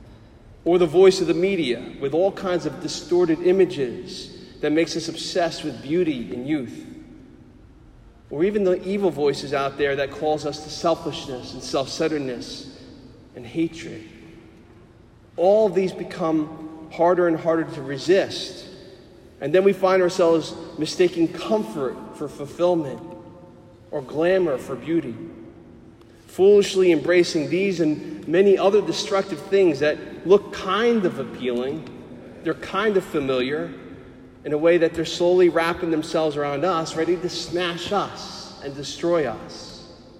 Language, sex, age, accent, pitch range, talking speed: English, male, 40-59, American, 135-180 Hz, 135 wpm